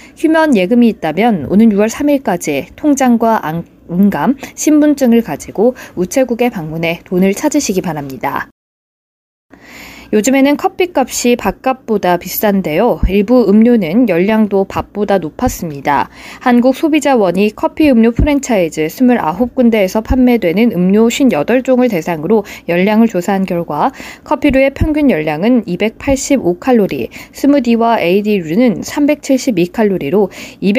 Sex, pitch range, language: female, 185-265 Hz, Korean